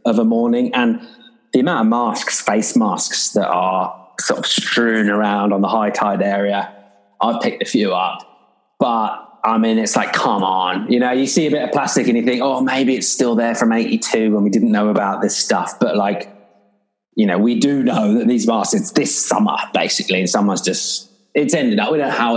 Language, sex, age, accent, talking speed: English, male, 20-39, British, 220 wpm